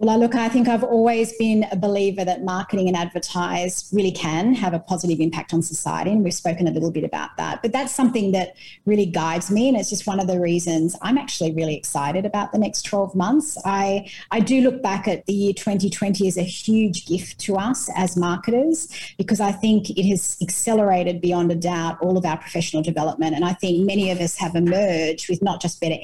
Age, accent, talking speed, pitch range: 40-59, Australian, 220 wpm, 170-200 Hz